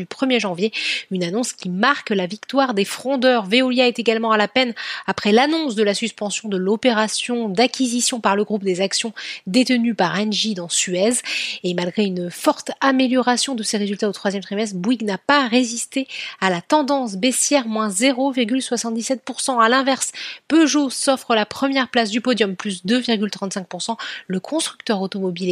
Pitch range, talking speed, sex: 205-255 Hz, 165 wpm, female